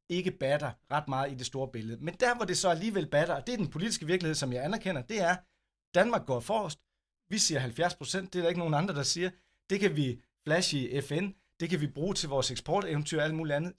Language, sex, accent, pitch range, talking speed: Danish, male, native, 130-170 Hz, 250 wpm